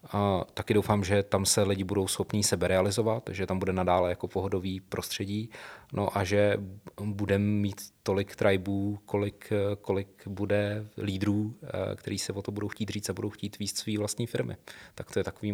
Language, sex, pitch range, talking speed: Czech, male, 95-100 Hz, 180 wpm